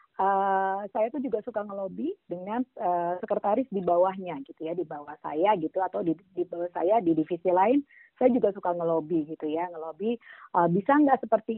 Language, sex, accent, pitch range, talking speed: Indonesian, female, native, 175-225 Hz, 185 wpm